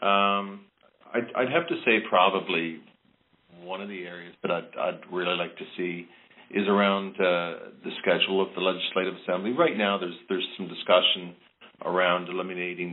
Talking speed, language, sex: 165 wpm, English, male